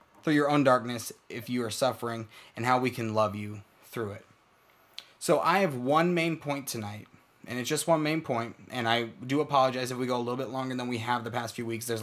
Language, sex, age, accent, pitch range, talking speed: English, male, 20-39, American, 115-145 Hz, 240 wpm